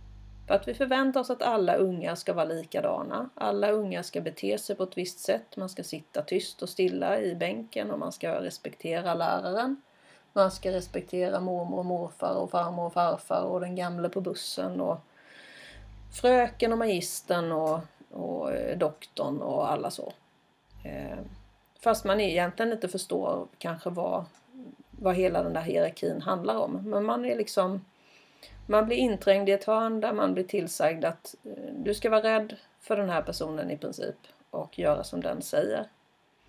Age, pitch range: 30-49, 175-215 Hz